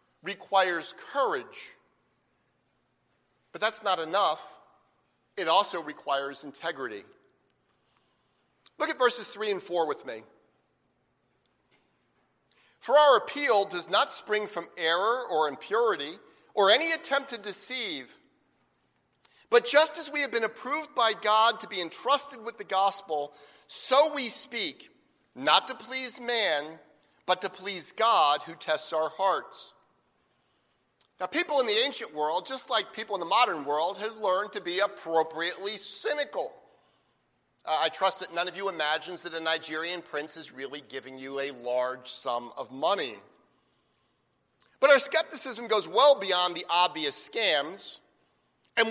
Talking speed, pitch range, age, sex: 140 wpm, 155-255 Hz, 50-69, male